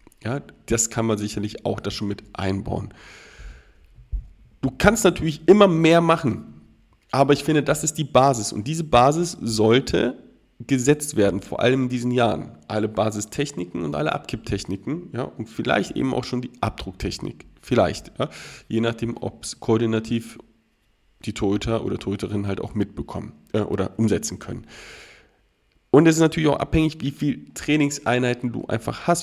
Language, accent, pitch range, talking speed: German, German, 110-145 Hz, 155 wpm